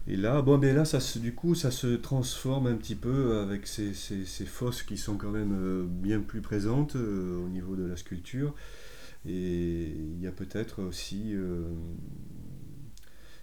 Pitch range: 95-110 Hz